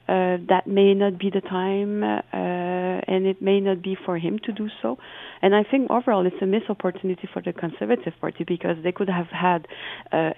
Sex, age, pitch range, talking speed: female, 30-49, 175-195 Hz, 210 wpm